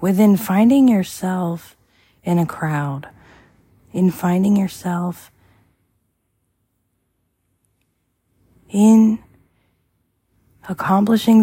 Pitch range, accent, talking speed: 115-175 Hz, American, 60 wpm